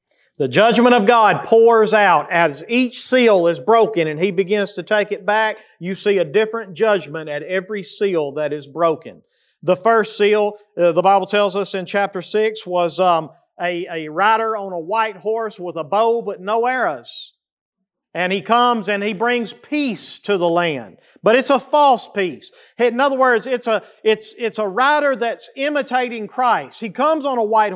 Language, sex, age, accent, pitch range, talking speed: English, male, 40-59, American, 185-240 Hz, 190 wpm